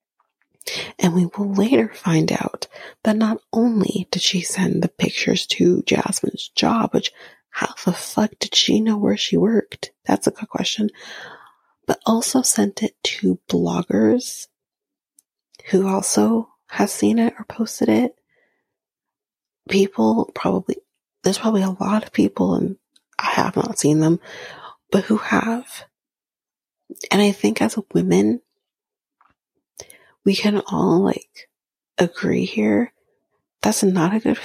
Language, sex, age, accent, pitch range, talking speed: English, female, 30-49, American, 190-230 Hz, 135 wpm